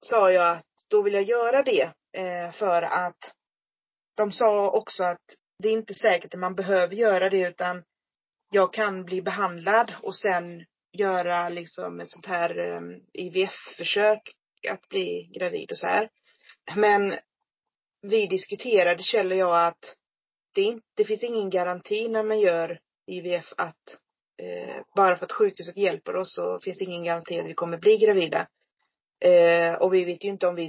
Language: Swedish